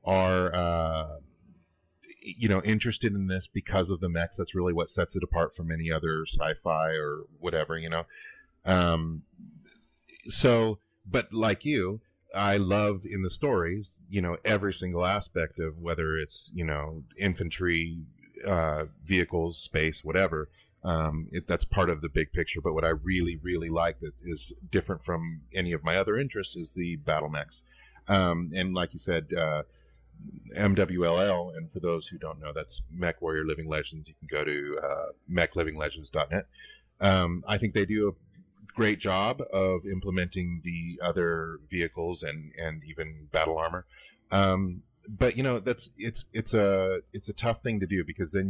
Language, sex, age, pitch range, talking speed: English, male, 30-49, 80-95 Hz, 165 wpm